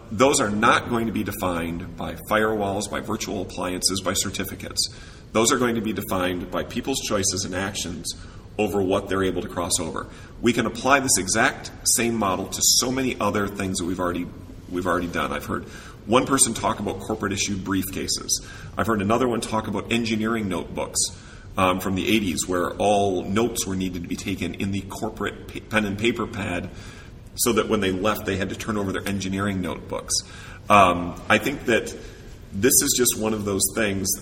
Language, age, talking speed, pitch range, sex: English, 40-59, 190 wpm, 95-110 Hz, male